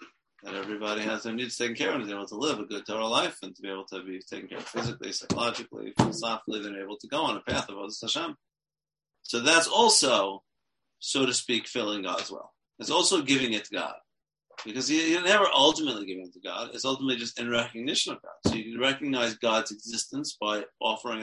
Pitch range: 110-140 Hz